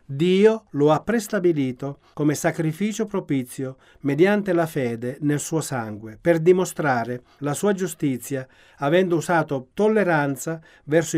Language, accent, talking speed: Italian, native, 120 wpm